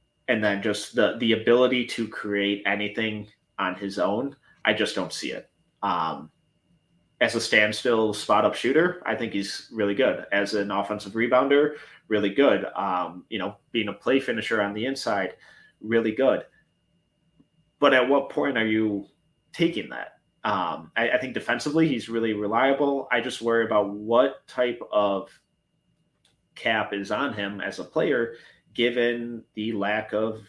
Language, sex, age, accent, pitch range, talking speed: English, male, 30-49, American, 105-115 Hz, 160 wpm